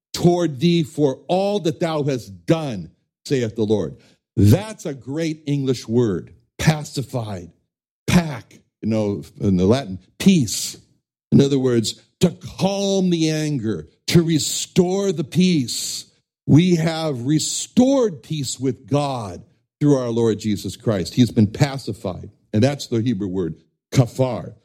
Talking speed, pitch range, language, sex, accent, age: 135 wpm, 115-170 Hz, English, male, American, 60-79